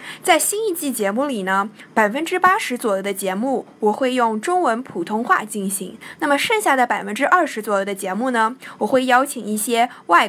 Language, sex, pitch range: Chinese, female, 210-275 Hz